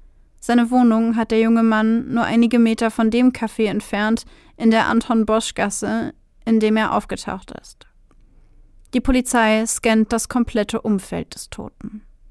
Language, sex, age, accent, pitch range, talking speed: German, female, 30-49, German, 220-245 Hz, 140 wpm